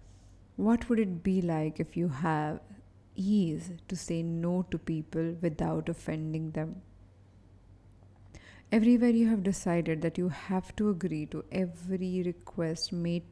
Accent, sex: Indian, female